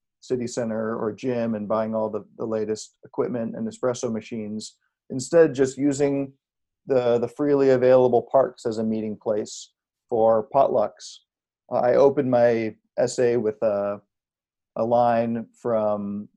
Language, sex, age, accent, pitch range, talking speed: English, male, 40-59, American, 110-130 Hz, 135 wpm